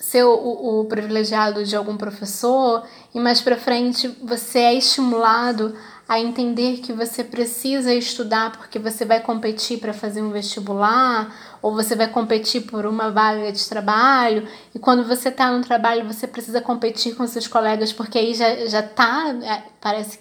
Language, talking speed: Portuguese, 165 wpm